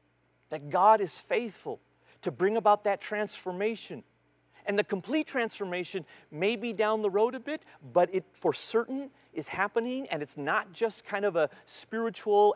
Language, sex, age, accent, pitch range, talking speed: English, male, 40-59, American, 135-205 Hz, 160 wpm